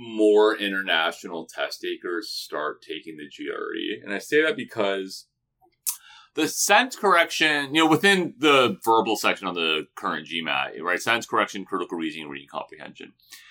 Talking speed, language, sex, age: 145 wpm, English, male, 30-49